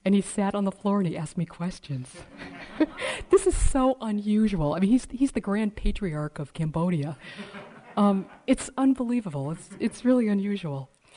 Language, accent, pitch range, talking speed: English, American, 155-210 Hz, 165 wpm